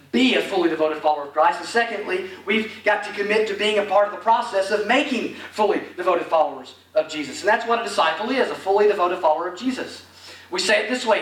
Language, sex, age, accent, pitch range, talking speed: English, male, 40-59, American, 155-215 Hz, 235 wpm